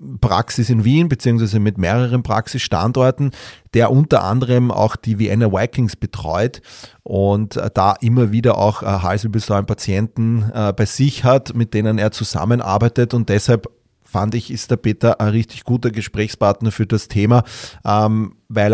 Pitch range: 105-120 Hz